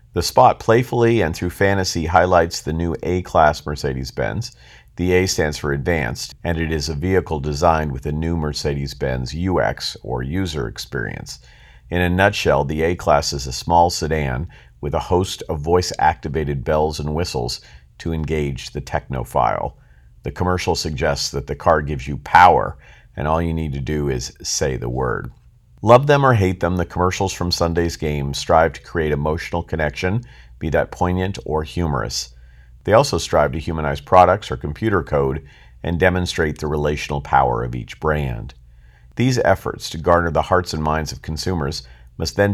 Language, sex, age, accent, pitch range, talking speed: English, male, 50-69, American, 70-90 Hz, 170 wpm